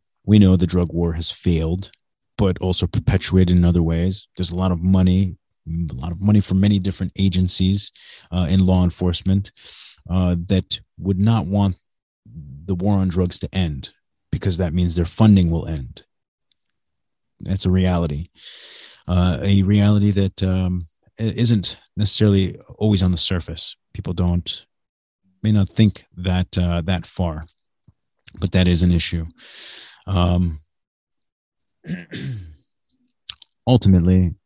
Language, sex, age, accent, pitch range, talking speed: English, male, 30-49, American, 85-100 Hz, 135 wpm